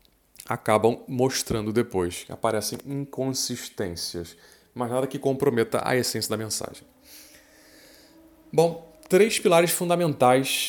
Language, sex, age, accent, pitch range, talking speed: Portuguese, male, 20-39, Brazilian, 110-150 Hz, 95 wpm